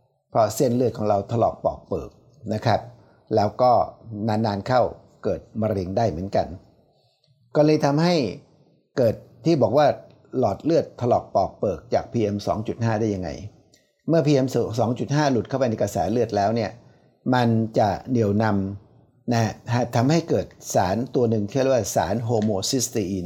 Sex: male